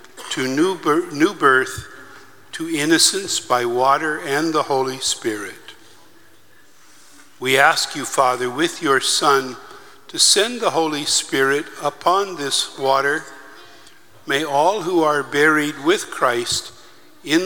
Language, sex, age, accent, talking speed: English, male, 50-69, American, 120 wpm